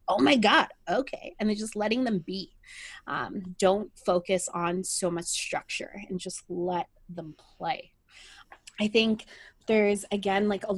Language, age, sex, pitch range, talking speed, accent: English, 20-39, female, 185-245 Hz, 155 wpm, American